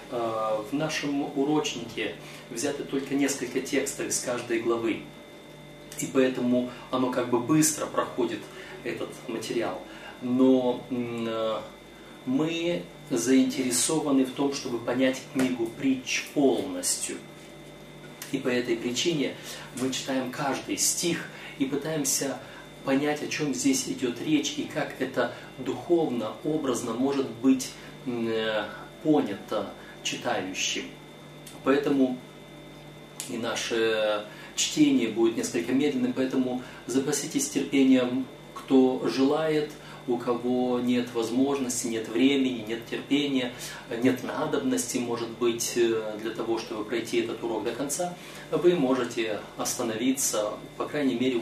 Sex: male